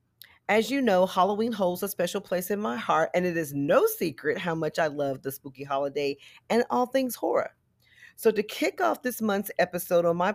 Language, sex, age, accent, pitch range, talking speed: English, female, 40-59, American, 150-215 Hz, 210 wpm